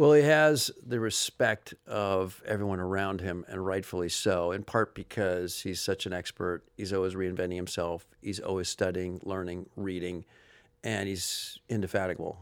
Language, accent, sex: English, American, male